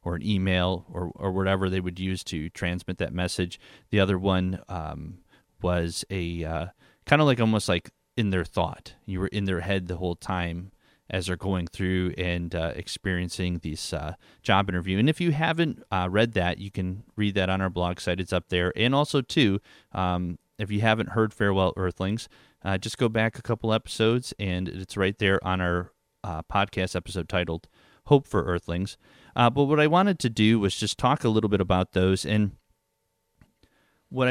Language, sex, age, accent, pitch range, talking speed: English, male, 30-49, American, 90-110 Hz, 195 wpm